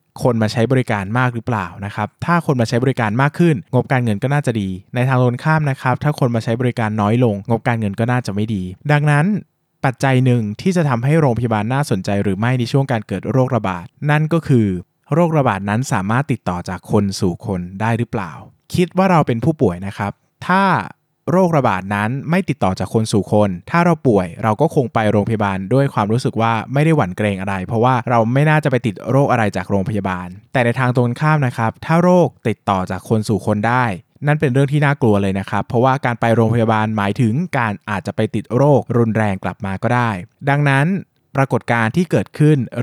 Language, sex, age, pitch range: Thai, male, 20-39, 105-140 Hz